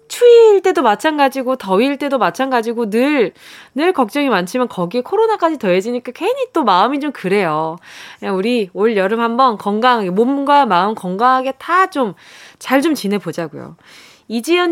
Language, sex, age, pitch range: Korean, female, 20-39, 215-325 Hz